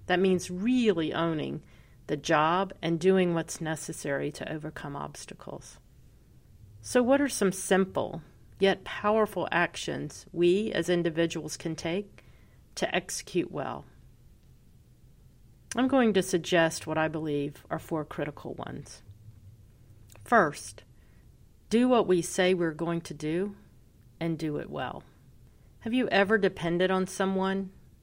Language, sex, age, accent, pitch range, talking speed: English, female, 40-59, American, 155-190 Hz, 125 wpm